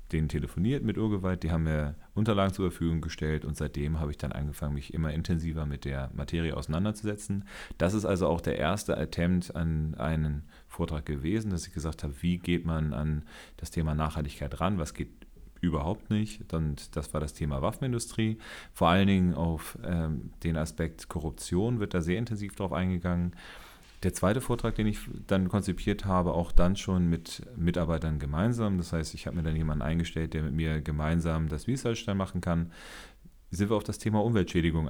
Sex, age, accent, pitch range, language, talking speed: male, 40-59, German, 80-95 Hz, German, 180 wpm